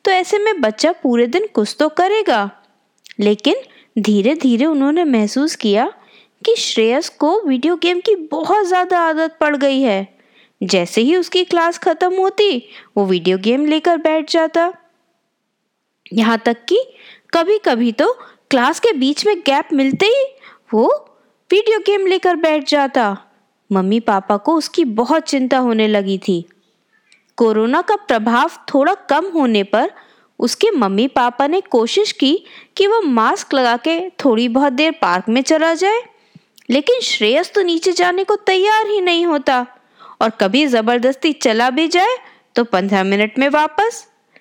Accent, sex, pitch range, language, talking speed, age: native, female, 230-360 Hz, Hindi, 155 wpm, 20-39